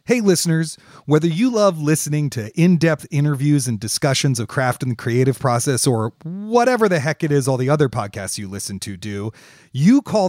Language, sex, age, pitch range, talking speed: English, male, 40-59, 125-175 Hz, 190 wpm